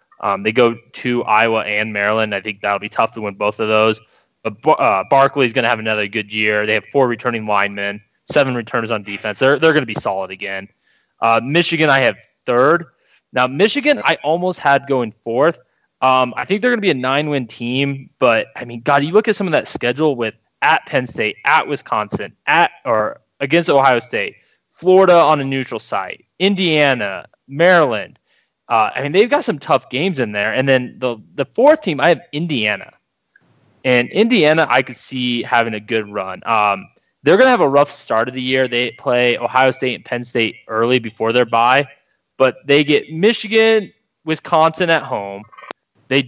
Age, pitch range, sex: 20-39, 115-155 Hz, male